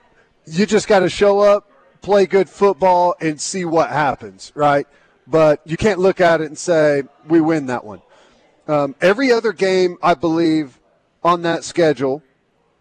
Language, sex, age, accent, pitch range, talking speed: English, male, 40-59, American, 155-195 Hz, 165 wpm